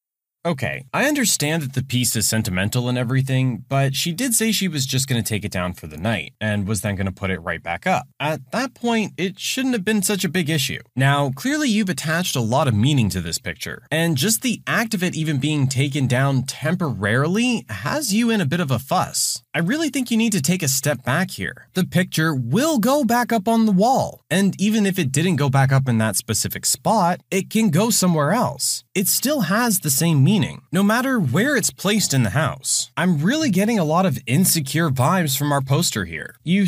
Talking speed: 230 wpm